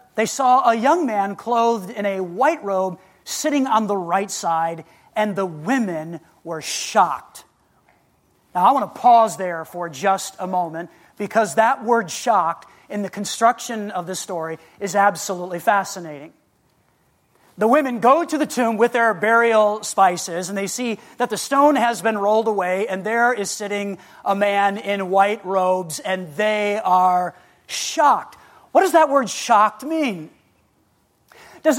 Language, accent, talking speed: English, American, 155 wpm